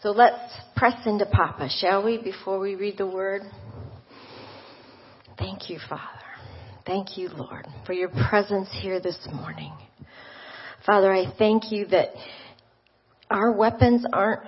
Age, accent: 40-59, American